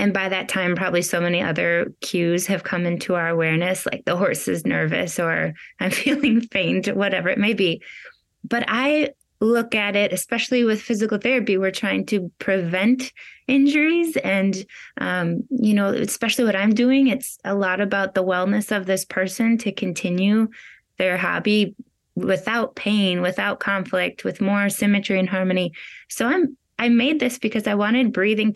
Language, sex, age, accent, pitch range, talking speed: English, female, 20-39, American, 185-225 Hz, 165 wpm